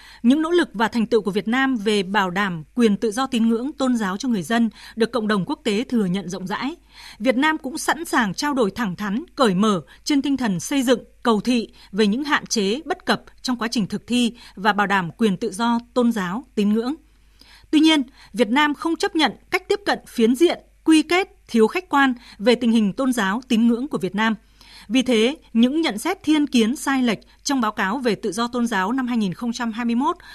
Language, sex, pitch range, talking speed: Vietnamese, female, 210-260 Hz, 230 wpm